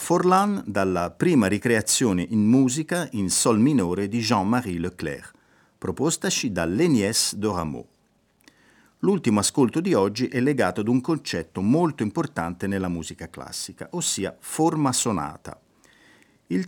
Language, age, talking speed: Italian, 50-69, 120 wpm